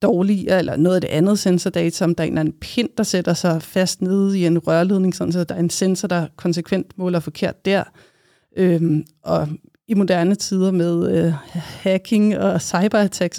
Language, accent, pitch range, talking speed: Danish, native, 175-205 Hz, 190 wpm